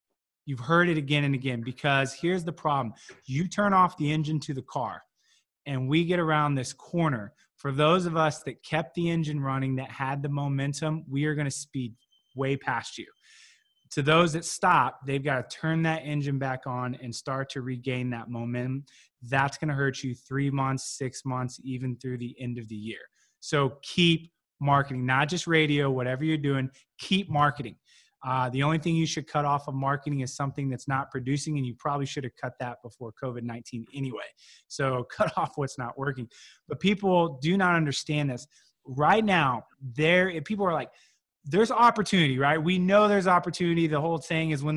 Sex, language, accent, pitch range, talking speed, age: male, English, American, 130-160 Hz, 195 wpm, 20-39